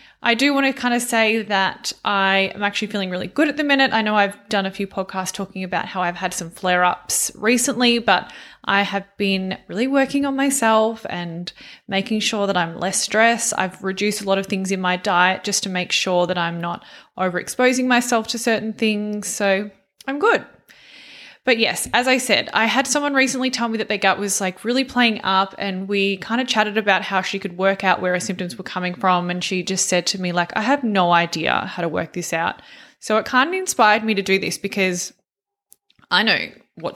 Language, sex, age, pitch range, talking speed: English, female, 20-39, 185-235 Hz, 220 wpm